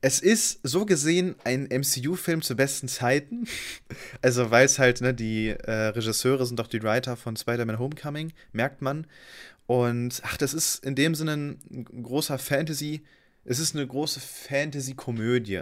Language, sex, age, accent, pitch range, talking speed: German, male, 20-39, German, 115-140 Hz, 160 wpm